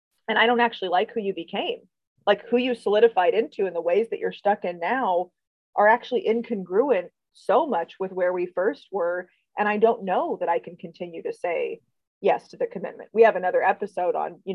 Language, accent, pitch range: English, American, 175-235 Hz